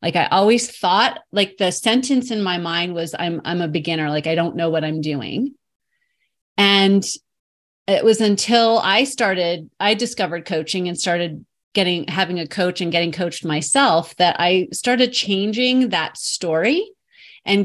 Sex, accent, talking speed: female, American, 165 wpm